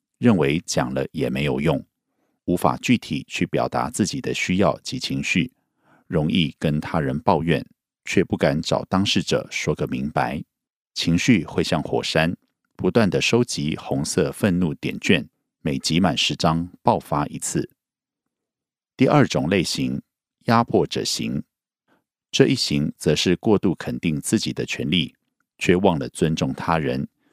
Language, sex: Korean, male